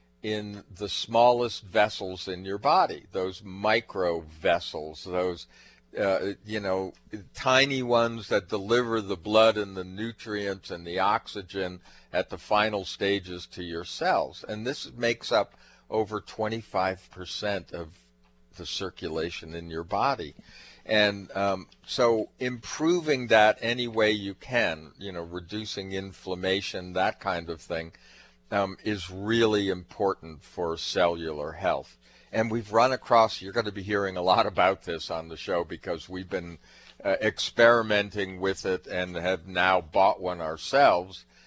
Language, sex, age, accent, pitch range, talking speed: English, male, 50-69, American, 90-110 Hz, 145 wpm